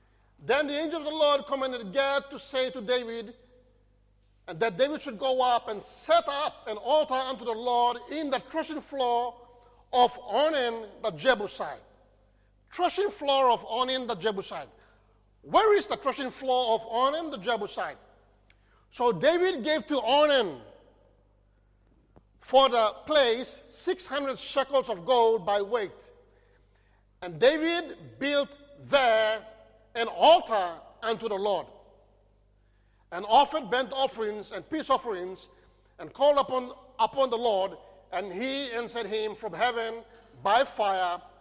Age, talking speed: 50-69, 135 wpm